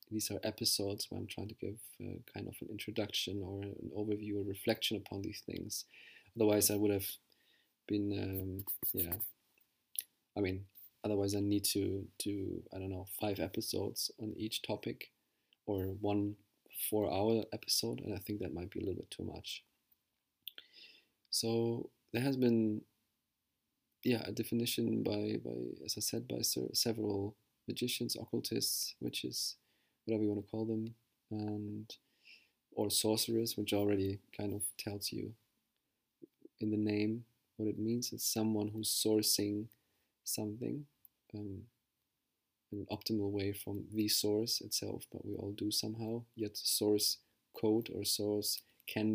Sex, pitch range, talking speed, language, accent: male, 100-110 Hz, 150 wpm, English, German